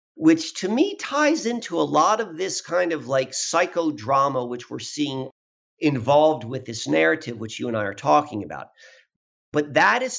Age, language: 50-69, English